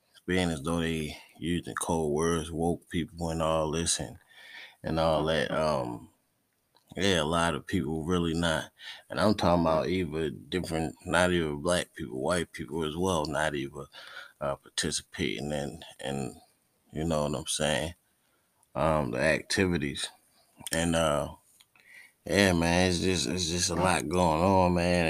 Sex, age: male, 20-39